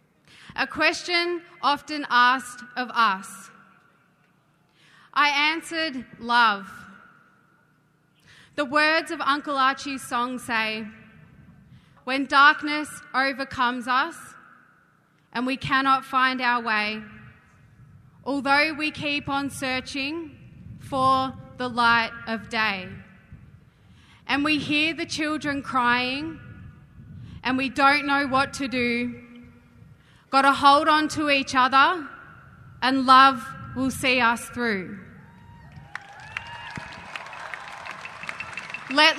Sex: female